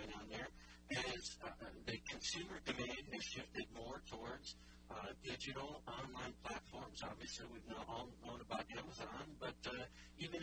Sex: male